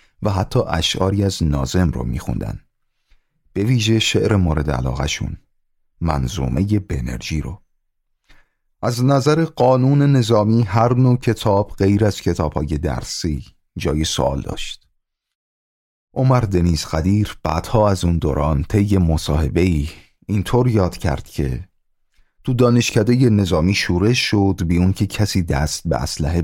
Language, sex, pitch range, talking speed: Persian, male, 80-110 Hz, 125 wpm